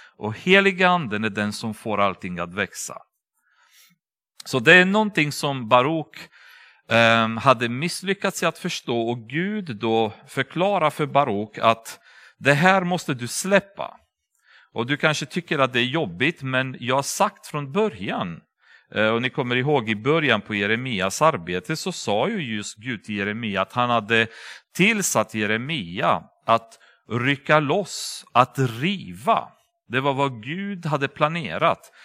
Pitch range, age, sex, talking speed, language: 120-180 Hz, 40-59, male, 145 wpm, Swedish